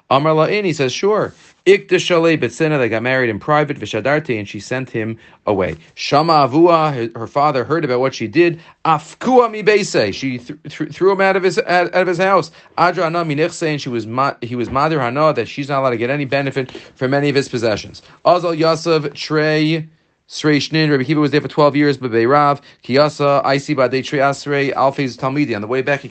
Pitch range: 130-165 Hz